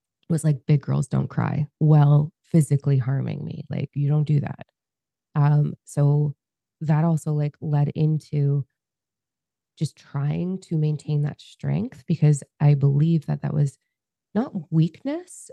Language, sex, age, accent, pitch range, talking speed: English, female, 20-39, American, 140-155 Hz, 140 wpm